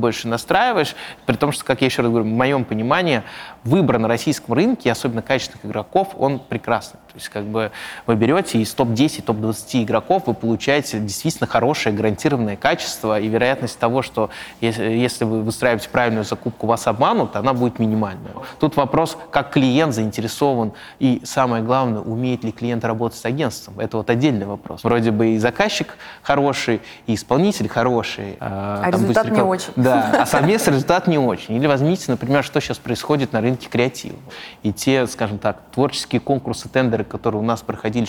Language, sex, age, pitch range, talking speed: Russian, male, 20-39, 110-135 Hz, 170 wpm